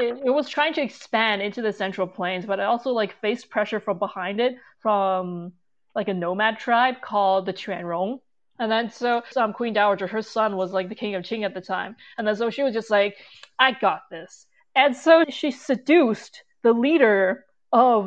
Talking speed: 205 wpm